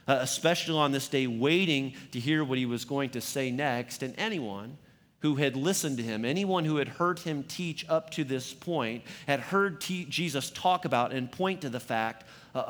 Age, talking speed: 40-59, 205 wpm